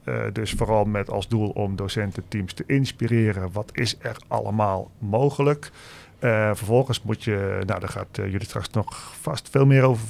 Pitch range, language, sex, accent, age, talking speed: 100-120 Hz, Dutch, male, Dutch, 40-59, 180 wpm